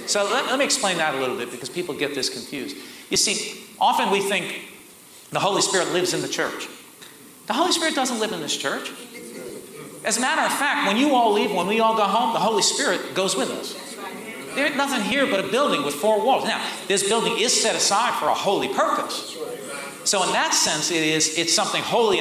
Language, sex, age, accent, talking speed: English, male, 40-59, American, 220 wpm